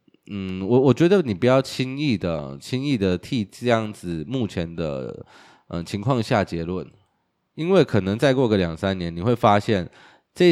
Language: Chinese